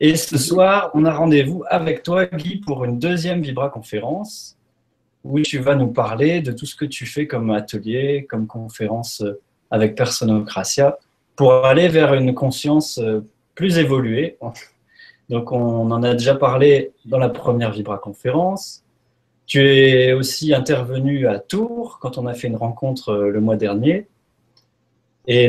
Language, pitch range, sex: French, 120-150 Hz, male